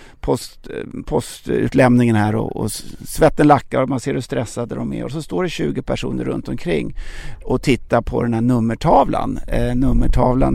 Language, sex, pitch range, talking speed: English, male, 120-160 Hz, 170 wpm